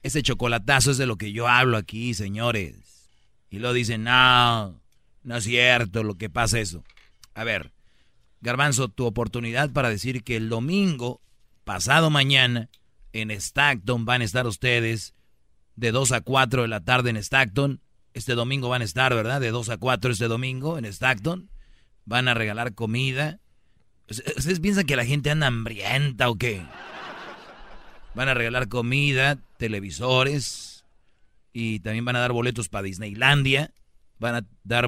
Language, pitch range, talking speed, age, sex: Spanish, 110-135 Hz, 160 wpm, 40-59, male